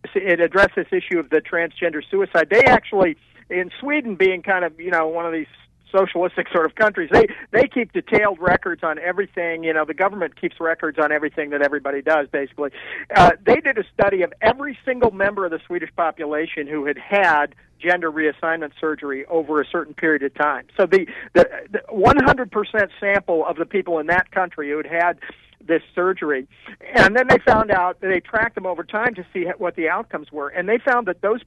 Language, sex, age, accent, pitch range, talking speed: English, male, 50-69, American, 165-225 Hz, 205 wpm